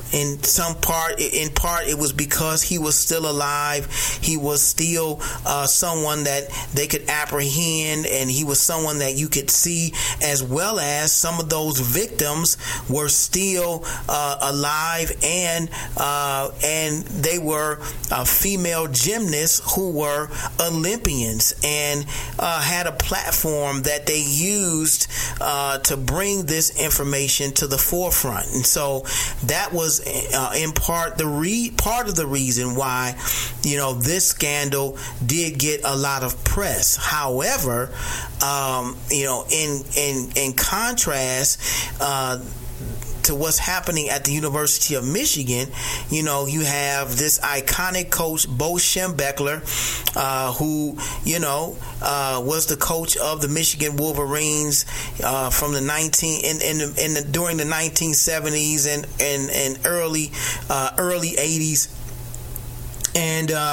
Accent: American